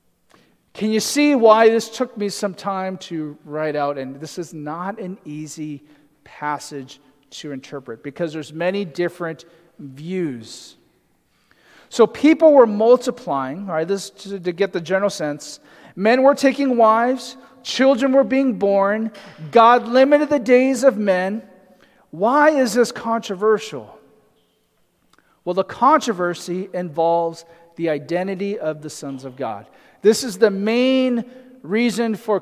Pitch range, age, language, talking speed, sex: 165-230 Hz, 40-59, English, 135 wpm, male